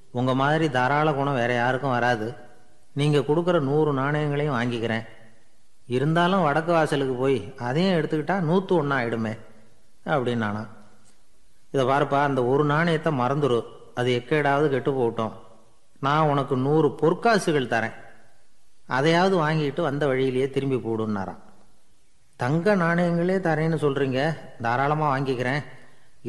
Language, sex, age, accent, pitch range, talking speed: Tamil, male, 30-49, native, 120-150 Hz, 115 wpm